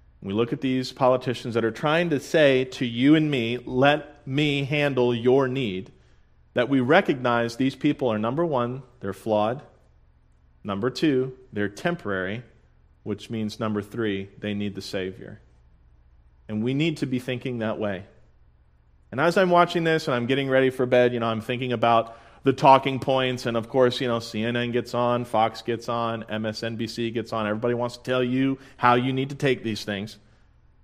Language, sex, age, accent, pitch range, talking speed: English, male, 40-59, American, 100-130 Hz, 185 wpm